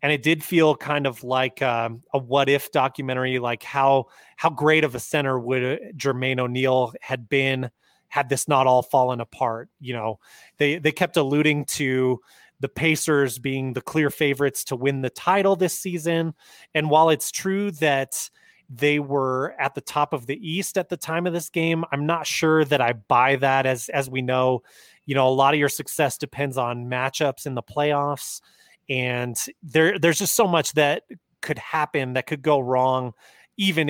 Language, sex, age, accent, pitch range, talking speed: English, male, 30-49, American, 130-160 Hz, 185 wpm